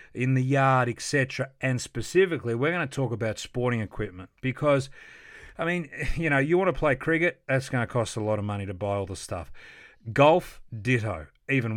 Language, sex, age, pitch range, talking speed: English, male, 40-59, 120-155 Hz, 200 wpm